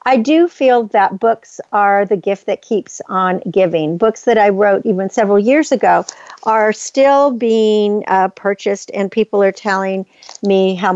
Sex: female